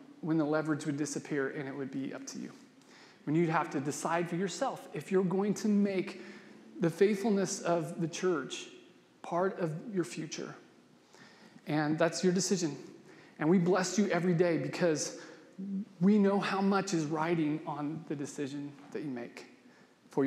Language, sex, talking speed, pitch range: English, male, 170 wpm, 160-200 Hz